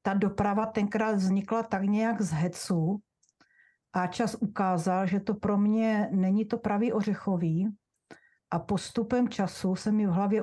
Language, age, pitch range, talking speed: Czech, 50-69, 185-225 Hz, 150 wpm